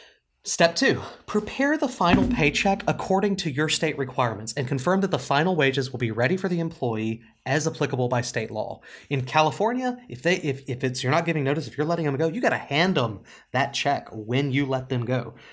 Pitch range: 120-160 Hz